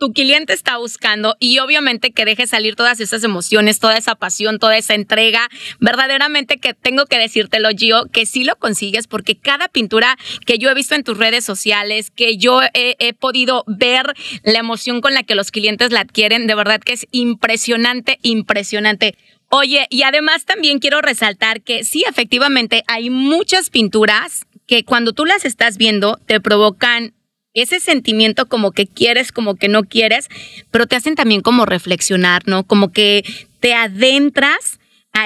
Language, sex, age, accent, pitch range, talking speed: Spanish, female, 30-49, Mexican, 215-250 Hz, 170 wpm